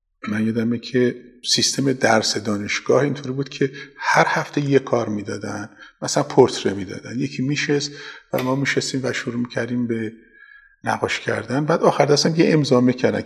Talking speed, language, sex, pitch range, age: 155 wpm, Persian, male, 115-145 Hz, 50-69